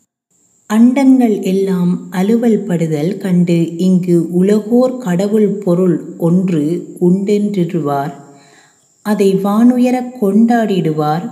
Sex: female